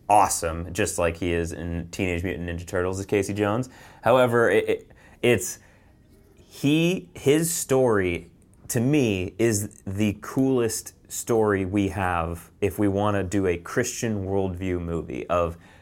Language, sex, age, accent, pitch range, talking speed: English, male, 30-49, American, 90-105 Hz, 145 wpm